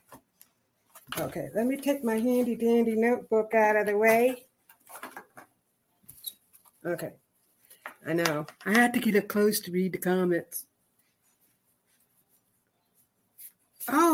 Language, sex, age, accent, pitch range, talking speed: English, female, 60-79, American, 195-255 Hz, 110 wpm